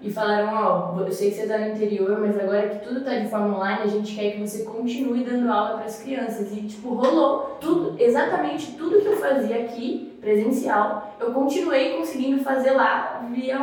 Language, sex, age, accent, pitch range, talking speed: Portuguese, female, 10-29, Brazilian, 205-255 Hz, 205 wpm